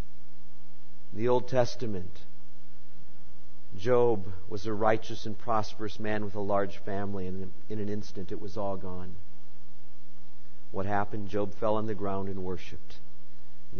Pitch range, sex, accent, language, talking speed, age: 90-145 Hz, male, American, English, 145 wpm, 50-69